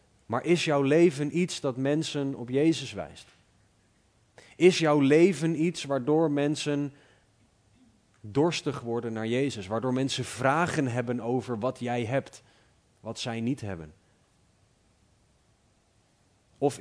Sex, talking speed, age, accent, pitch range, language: male, 120 wpm, 30-49, Dutch, 105-135 Hz, Dutch